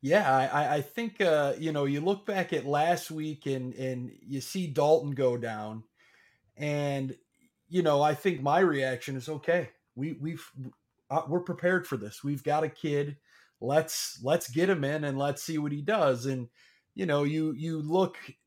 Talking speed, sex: 180 wpm, male